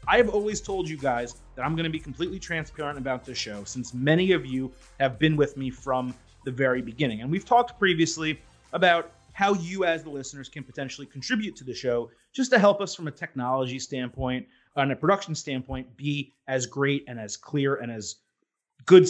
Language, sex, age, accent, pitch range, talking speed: English, male, 30-49, American, 130-160 Hz, 205 wpm